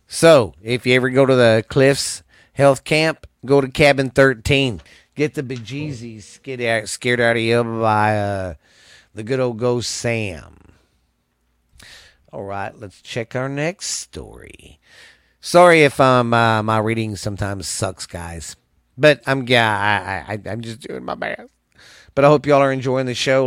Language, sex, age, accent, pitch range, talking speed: English, male, 40-59, American, 105-130 Hz, 165 wpm